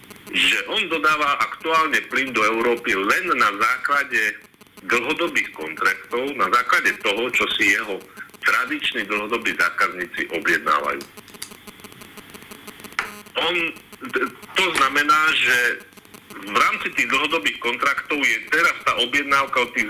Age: 50-69